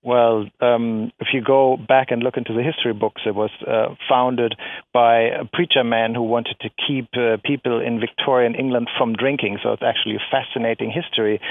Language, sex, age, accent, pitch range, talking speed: English, male, 50-69, German, 115-140 Hz, 195 wpm